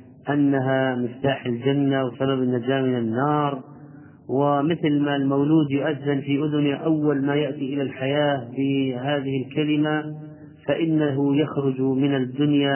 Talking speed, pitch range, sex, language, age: 115 wpm, 130-150 Hz, male, Arabic, 40-59